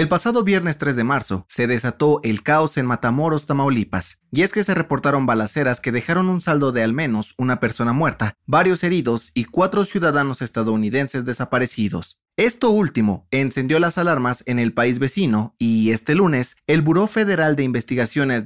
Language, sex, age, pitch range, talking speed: Spanish, male, 30-49, 115-155 Hz, 170 wpm